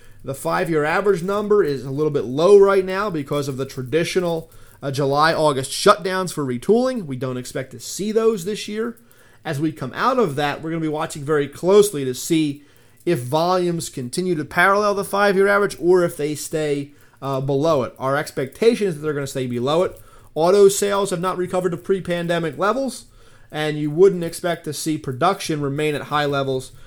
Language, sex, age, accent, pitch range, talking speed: English, male, 30-49, American, 135-175 Hz, 195 wpm